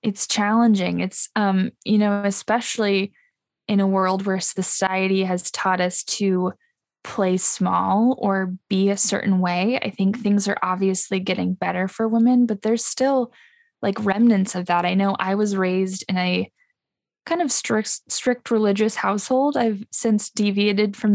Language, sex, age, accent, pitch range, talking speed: English, female, 10-29, American, 190-220 Hz, 160 wpm